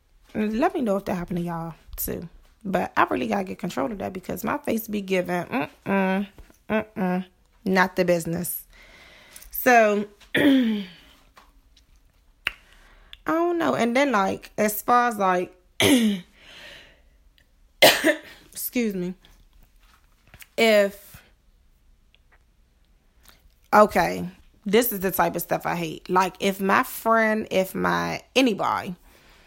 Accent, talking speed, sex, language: American, 115 wpm, female, English